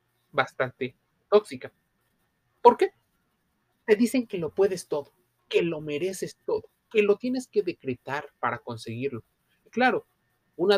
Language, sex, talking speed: Spanish, male, 130 wpm